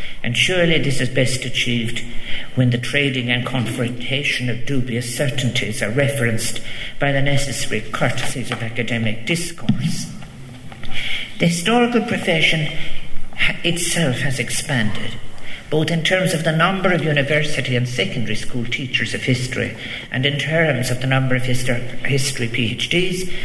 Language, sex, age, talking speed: English, male, 60-79, 135 wpm